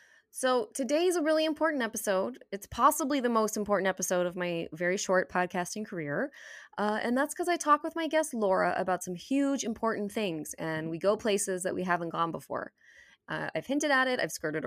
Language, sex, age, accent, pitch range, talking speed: English, female, 20-39, American, 165-220 Hz, 200 wpm